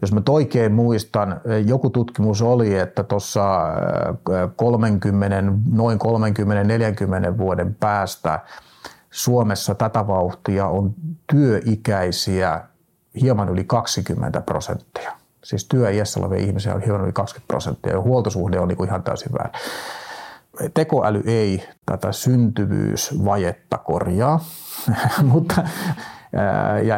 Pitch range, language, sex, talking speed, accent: 100-120 Hz, Finnish, male, 100 wpm, native